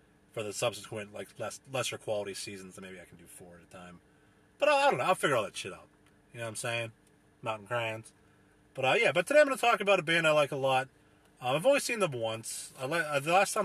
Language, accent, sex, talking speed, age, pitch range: English, American, male, 275 wpm, 30-49, 110-180 Hz